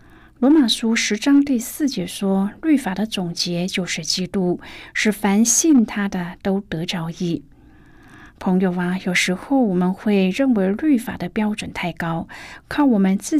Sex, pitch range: female, 180-255 Hz